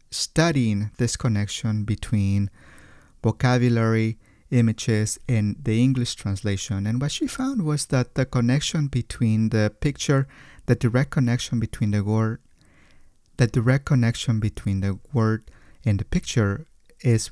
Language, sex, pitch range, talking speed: English, male, 105-130 Hz, 130 wpm